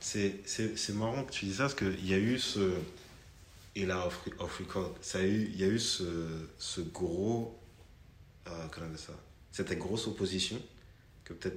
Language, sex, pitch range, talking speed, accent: French, male, 85-100 Hz, 180 wpm, French